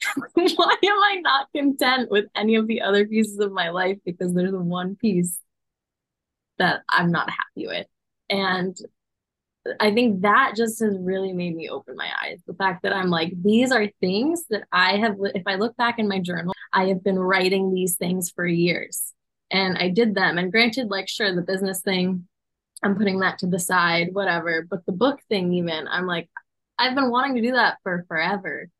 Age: 10-29